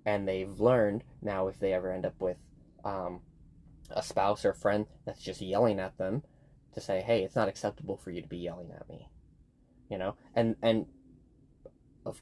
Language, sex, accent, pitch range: English, male, American, 95-110 Hz